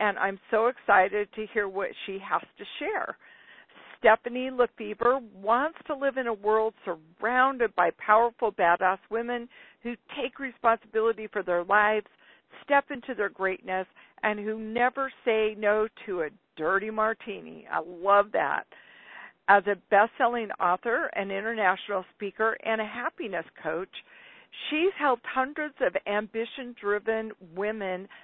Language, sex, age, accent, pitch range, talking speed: English, female, 50-69, American, 195-245 Hz, 135 wpm